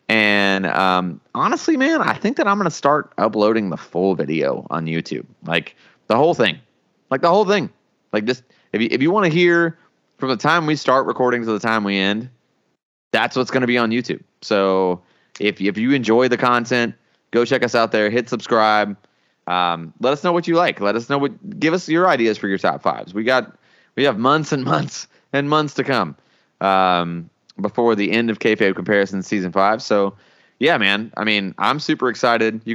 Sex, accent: male, American